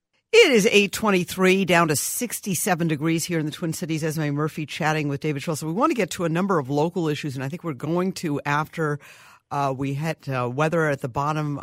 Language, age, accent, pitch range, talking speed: English, 50-69, American, 145-180 Hz, 225 wpm